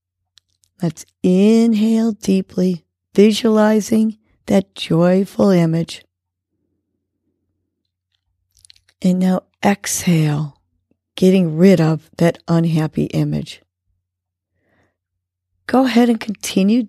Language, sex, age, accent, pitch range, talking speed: English, female, 40-59, American, 155-210 Hz, 70 wpm